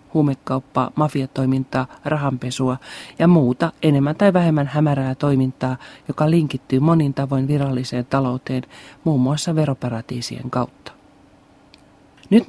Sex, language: male, Finnish